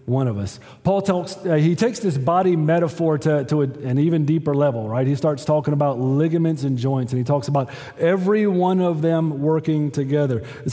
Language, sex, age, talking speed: English, male, 40-59, 205 wpm